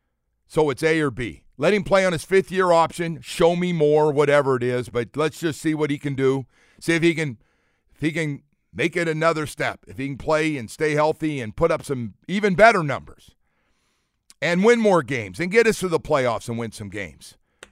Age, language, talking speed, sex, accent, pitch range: 50-69, English, 220 wpm, male, American, 110-155 Hz